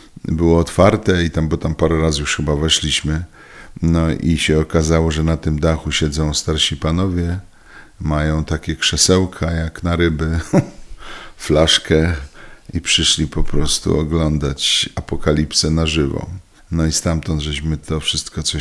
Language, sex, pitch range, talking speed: Polish, male, 80-85 Hz, 140 wpm